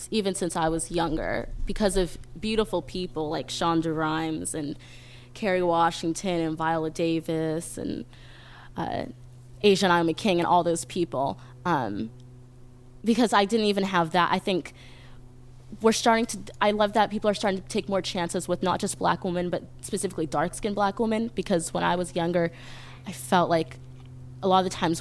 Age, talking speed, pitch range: 20-39, 175 wpm, 155-195 Hz